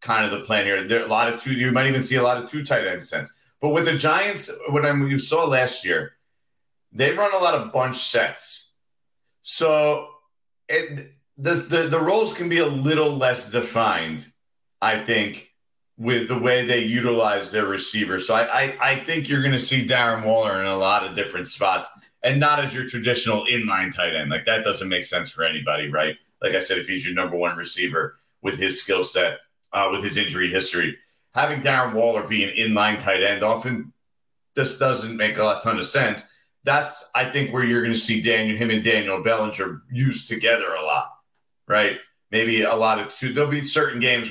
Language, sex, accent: English, male, American